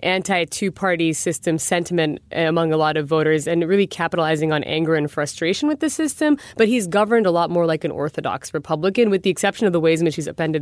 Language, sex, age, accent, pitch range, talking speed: English, female, 20-39, American, 160-200 Hz, 215 wpm